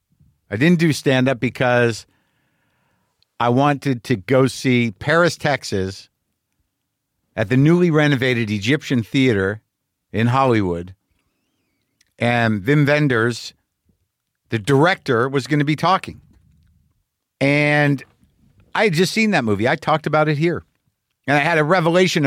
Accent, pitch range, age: American, 120-155 Hz, 50-69